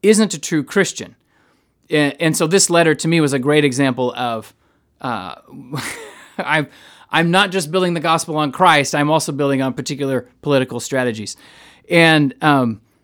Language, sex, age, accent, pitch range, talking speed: English, male, 30-49, American, 125-170 Hz, 160 wpm